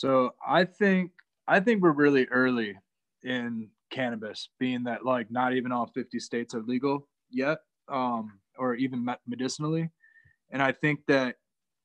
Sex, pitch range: male, 120-150 Hz